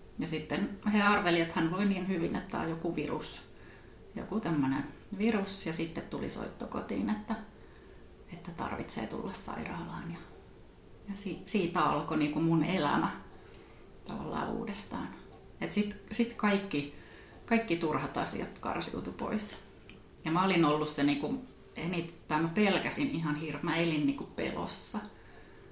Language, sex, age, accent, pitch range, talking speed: Finnish, female, 30-49, native, 150-200 Hz, 140 wpm